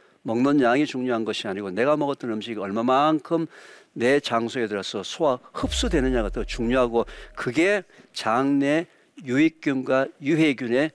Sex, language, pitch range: male, Korean, 115-155 Hz